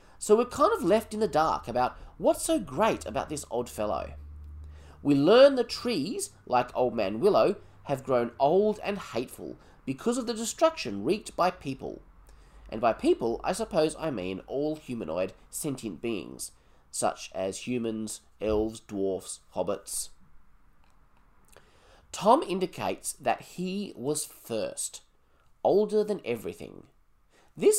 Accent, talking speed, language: Australian, 135 wpm, English